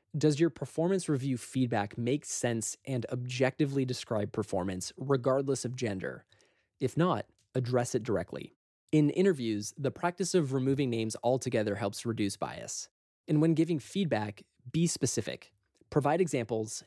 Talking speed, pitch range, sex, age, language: 135 wpm, 110-145 Hz, male, 20-39, English